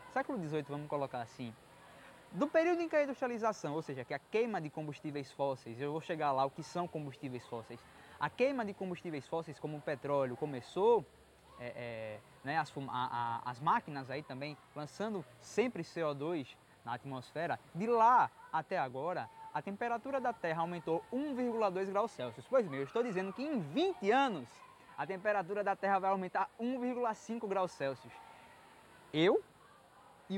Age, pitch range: 20-39, 140-230 Hz